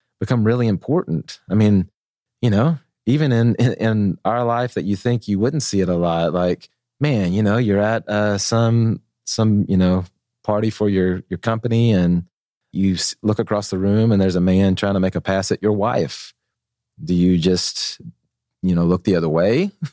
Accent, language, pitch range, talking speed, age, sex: American, English, 90-115 Hz, 195 wpm, 30-49, male